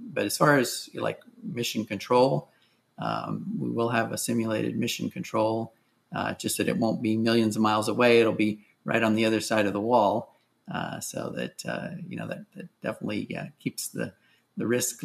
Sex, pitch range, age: male, 110-140 Hz, 30-49